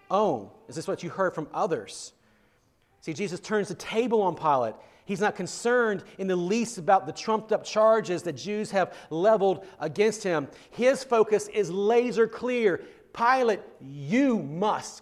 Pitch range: 170-230 Hz